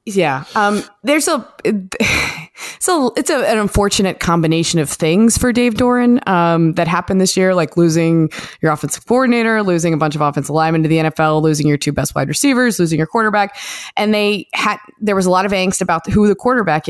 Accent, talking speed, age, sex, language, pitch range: American, 195 wpm, 20-39, female, English, 160-200 Hz